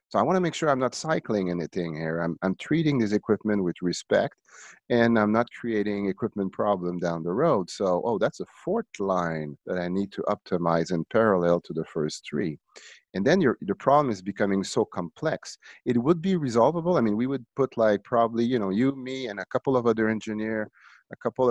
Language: English